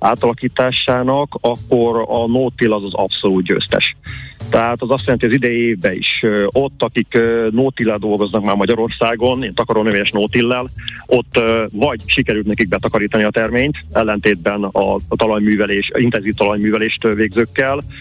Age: 40-59